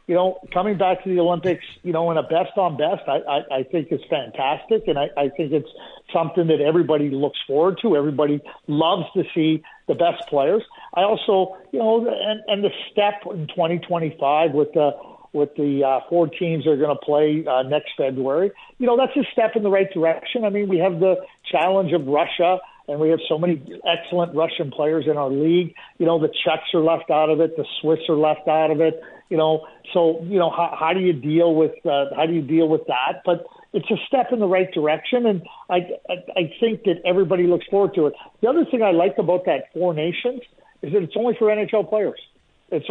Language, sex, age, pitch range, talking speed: English, male, 50-69, 155-200 Hz, 225 wpm